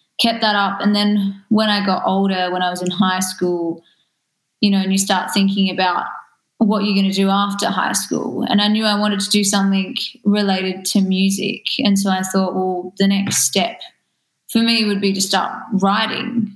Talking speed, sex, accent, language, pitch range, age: 205 wpm, female, Australian, English, 185-205 Hz, 20-39